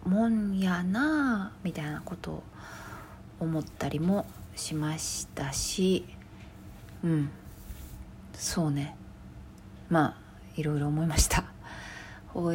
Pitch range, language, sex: 130-195 Hz, Japanese, female